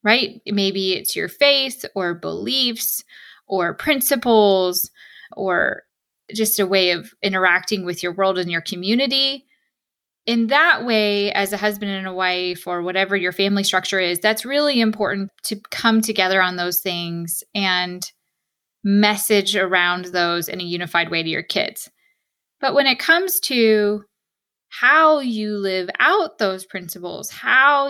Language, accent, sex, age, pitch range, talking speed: English, American, female, 20-39, 185-235 Hz, 145 wpm